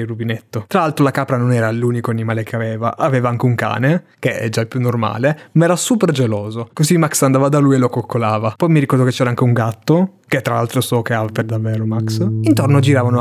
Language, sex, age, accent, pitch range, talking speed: Italian, male, 20-39, native, 110-145 Hz, 240 wpm